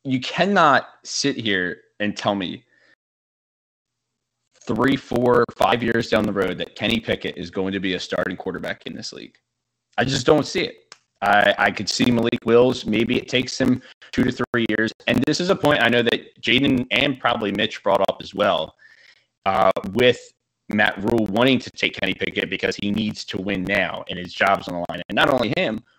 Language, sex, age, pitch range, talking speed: English, male, 20-39, 95-120 Hz, 200 wpm